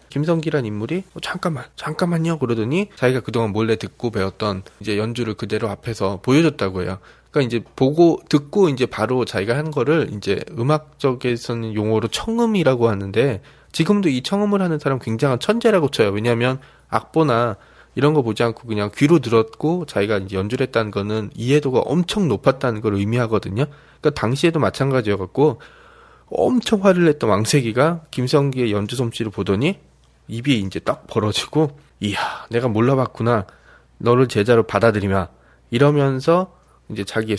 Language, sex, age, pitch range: Korean, male, 20-39, 110-160 Hz